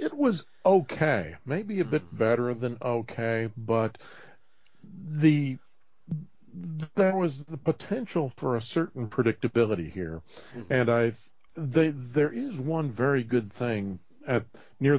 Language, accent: English, American